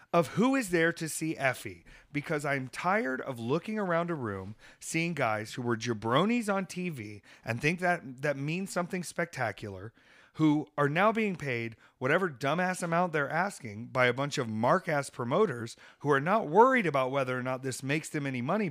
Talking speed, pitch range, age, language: 185 wpm, 120-175 Hz, 40-59, English